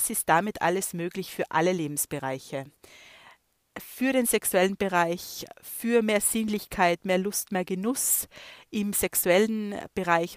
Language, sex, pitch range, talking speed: German, female, 170-195 Hz, 120 wpm